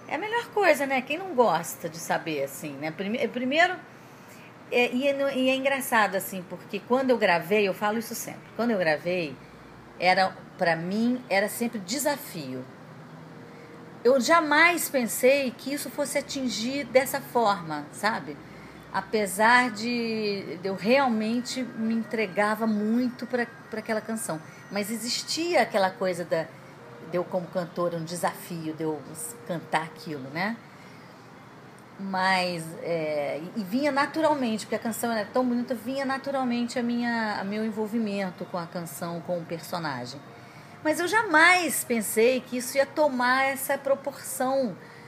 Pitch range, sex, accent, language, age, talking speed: 185-265 Hz, female, Brazilian, Portuguese, 40-59, 145 wpm